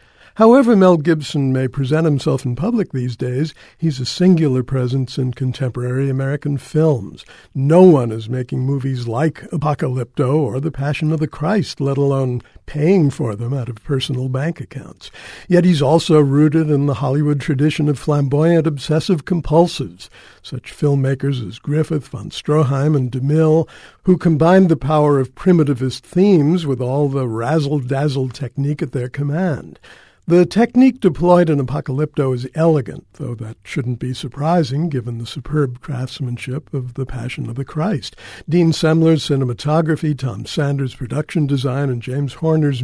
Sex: male